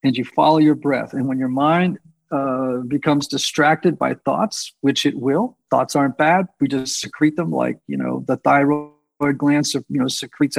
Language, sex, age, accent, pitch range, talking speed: English, male, 50-69, American, 140-190 Hz, 185 wpm